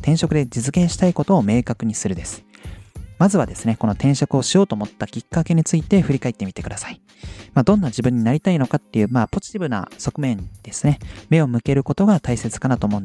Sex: male